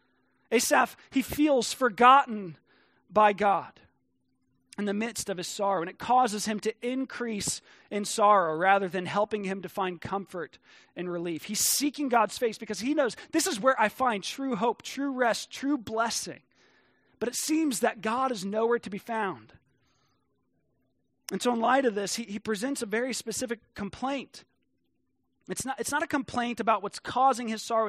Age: 30-49